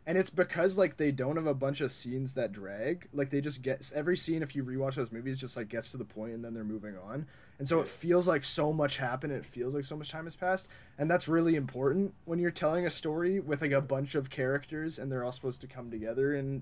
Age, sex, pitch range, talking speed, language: 20-39, male, 130-170 Hz, 265 wpm, English